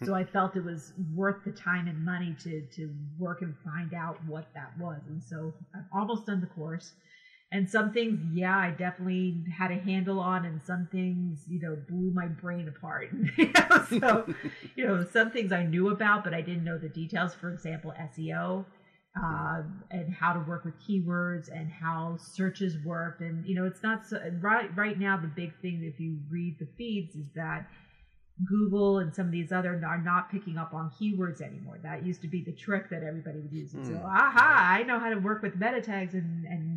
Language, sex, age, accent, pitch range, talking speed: English, female, 30-49, American, 165-200 Hz, 205 wpm